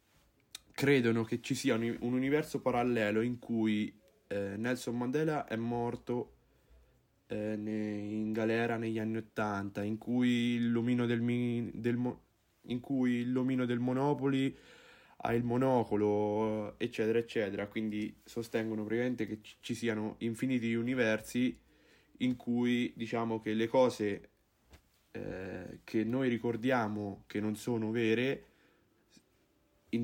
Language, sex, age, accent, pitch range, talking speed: Italian, male, 20-39, native, 105-120 Hz, 110 wpm